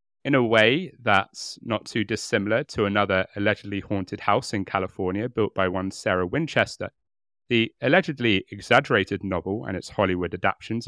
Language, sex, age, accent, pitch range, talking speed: English, male, 30-49, British, 95-120 Hz, 150 wpm